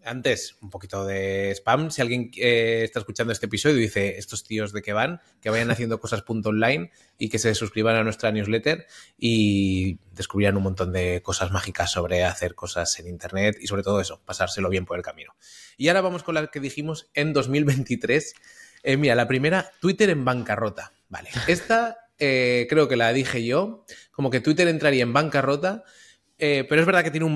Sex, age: male, 20-39